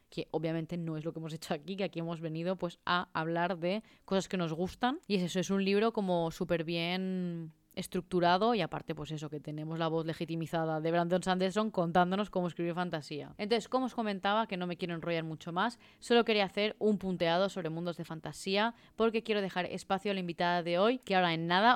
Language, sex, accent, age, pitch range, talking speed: Spanish, female, Spanish, 20-39, 175-220 Hz, 215 wpm